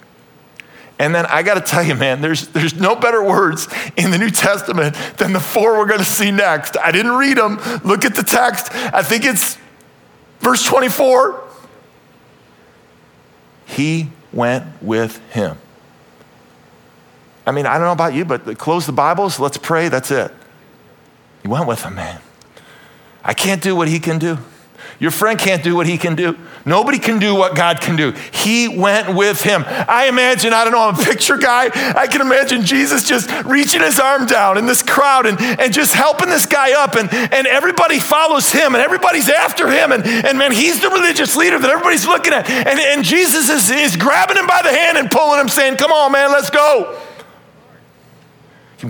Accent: American